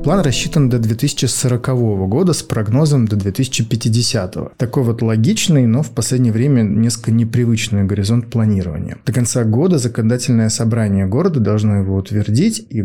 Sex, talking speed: male, 140 wpm